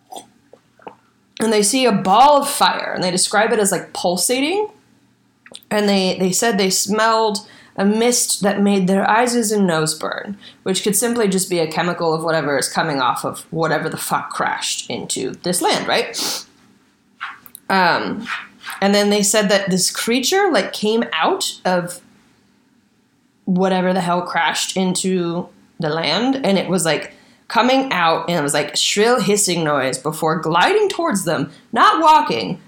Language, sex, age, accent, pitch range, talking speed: English, female, 20-39, American, 185-260 Hz, 160 wpm